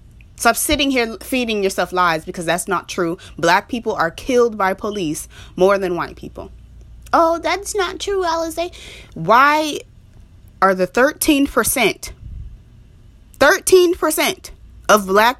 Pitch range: 160-245 Hz